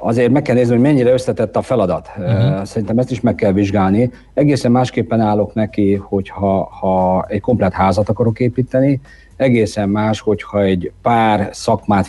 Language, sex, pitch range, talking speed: Hungarian, male, 95-115 Hz, 155 wpm